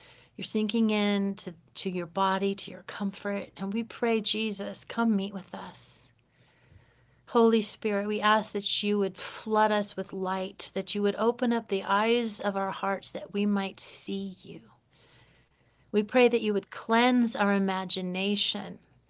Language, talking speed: English, 160 wpm